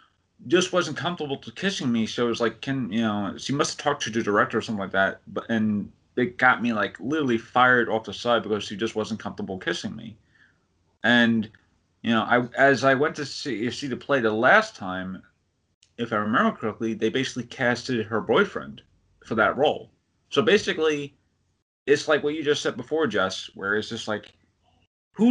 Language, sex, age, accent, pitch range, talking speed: English, male, 30-49, American, 105-140 Hz, 200 wpm